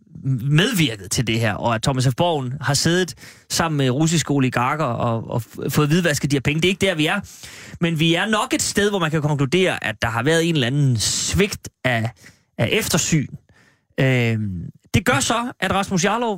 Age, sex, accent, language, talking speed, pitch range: 30-49, male, native, Danish, 205 wpm, 140-190 Hz